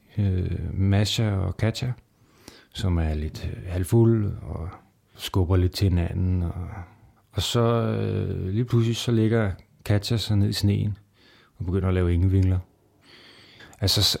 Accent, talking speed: native, 140 wpm